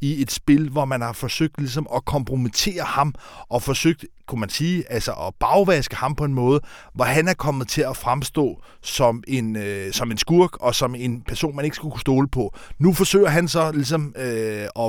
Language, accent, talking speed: Danish, native, 205 wpm